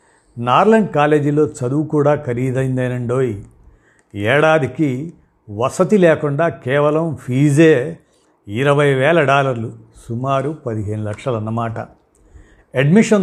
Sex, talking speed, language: male, 80 wpm, Telugu